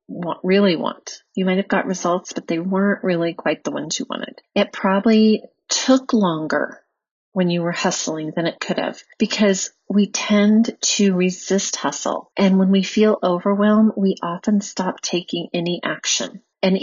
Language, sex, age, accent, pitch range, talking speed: English, female, 30-49, American, 180-215 Hz, 170 wpm